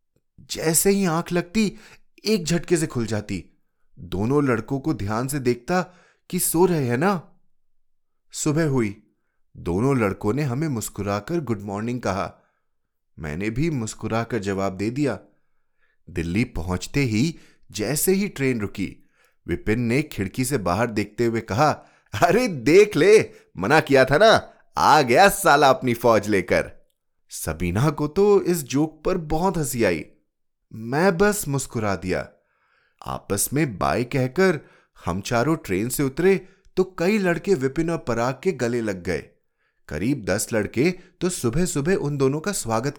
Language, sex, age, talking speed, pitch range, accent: Hindi, male, 30-49, 150 wpm, 110-175 Hz, native